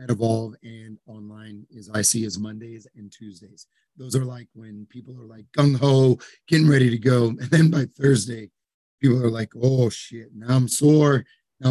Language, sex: English, male